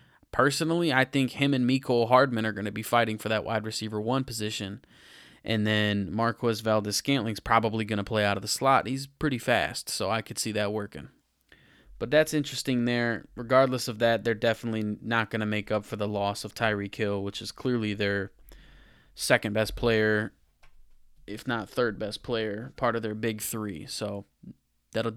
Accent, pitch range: American, 110-130 Hz